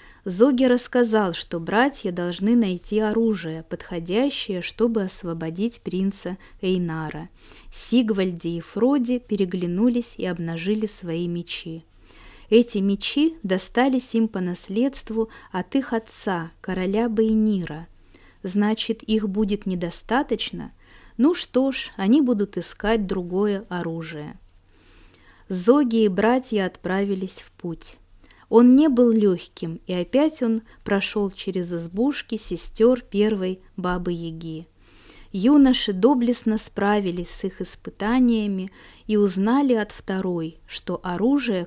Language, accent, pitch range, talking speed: Russian, native, 175-230 Hz, 110 wpm